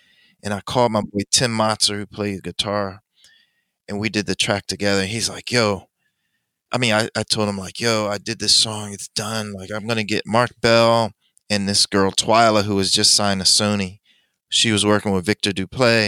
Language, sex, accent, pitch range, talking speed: English, male, American, 105-130 Hz, 215 wpm